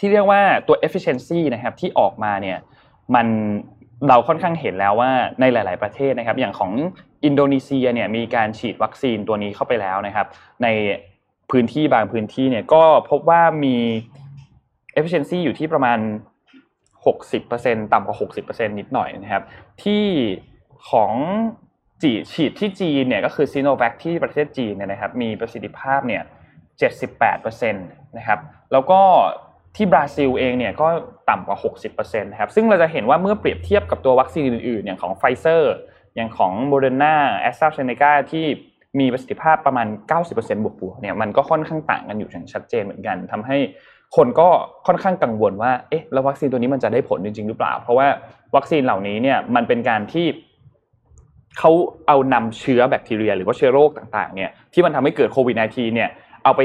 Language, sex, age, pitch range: Thai, male, 20-39, 115-165 Hz